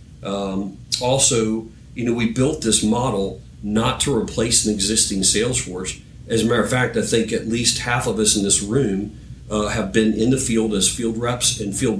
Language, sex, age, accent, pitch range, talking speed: English, male, 50-69, American, 105-125 Hz, 205 wpm